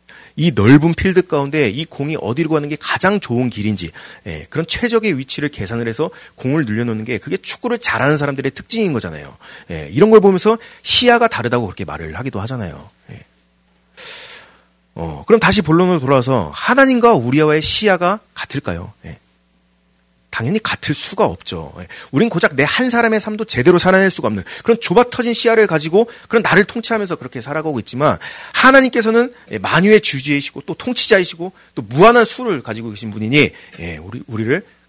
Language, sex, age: Korean, male, 30-49